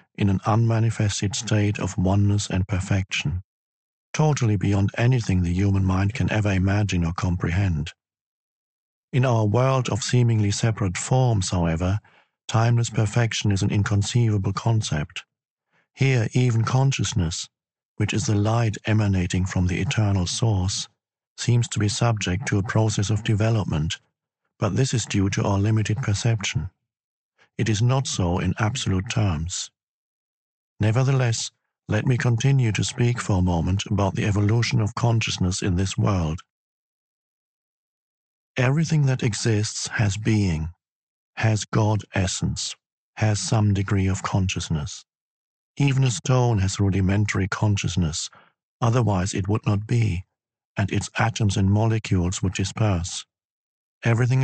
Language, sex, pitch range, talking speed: English, male, 95-115 Hz, 130 wpm